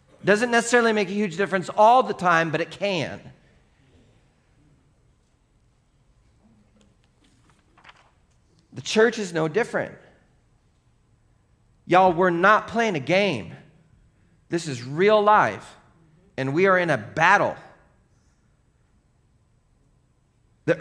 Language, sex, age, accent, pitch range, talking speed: English, male, 40-59, American, 130-205 Hz, 100 wpm